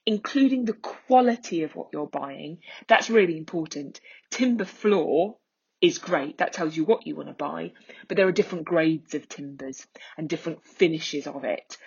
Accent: British